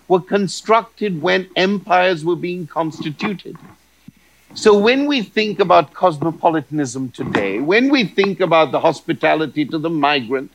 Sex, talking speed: male, 130 wpm